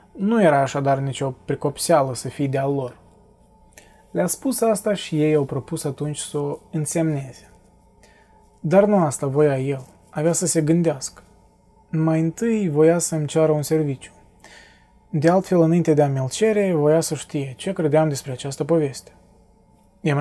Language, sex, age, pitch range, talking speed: Romanian, male, 20-39, 140-165 Hz, 155 wpm